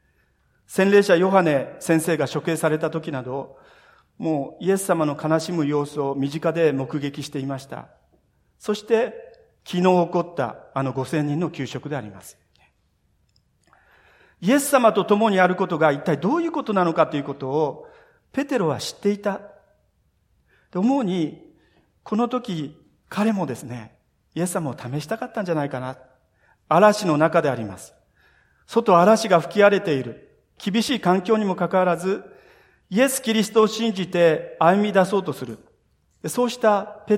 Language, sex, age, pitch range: Japanese, male, 40-59, 140-205 Hz